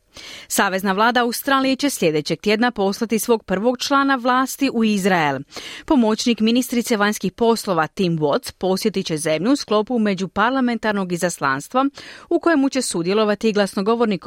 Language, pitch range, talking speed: Croatian, 180-250 Hz, 130 wpm